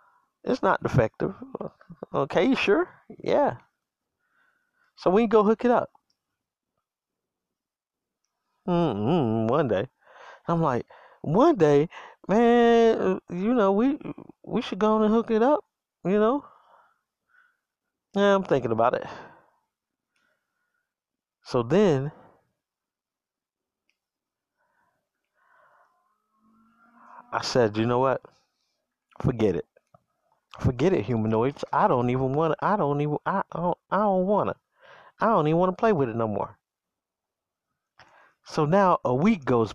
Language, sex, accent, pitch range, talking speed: English, male, American, 160-265 Hz, 120 wpm